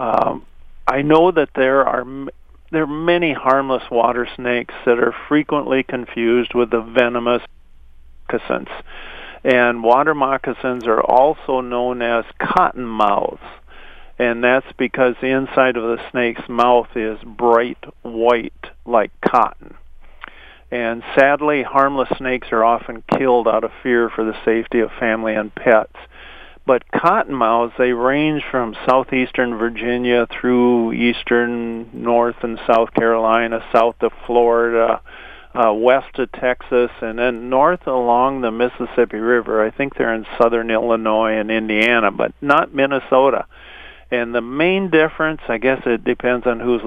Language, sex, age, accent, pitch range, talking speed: English, male, 50-69, American, 115-130 Hz, 135 wpm